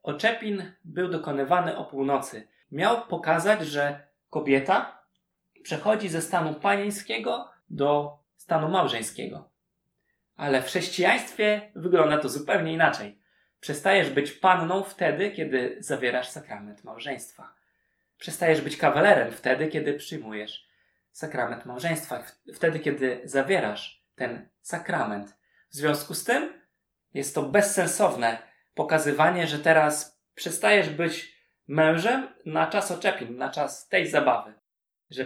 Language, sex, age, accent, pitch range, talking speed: Polish, male, 20-39, native, 130-180 Hz, 110 wpm